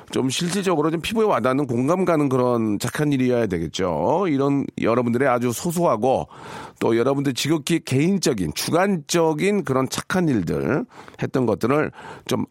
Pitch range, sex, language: 115-160 Hz, male, Korean